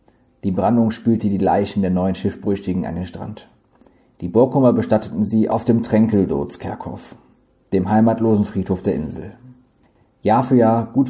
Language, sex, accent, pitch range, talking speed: German, male, German, 105-130 Hz, 145 wpm